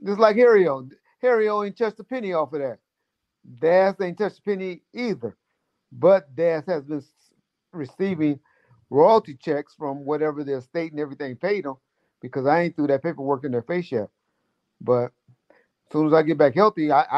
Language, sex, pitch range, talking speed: English, male, 145-185 Hz, 180 wpm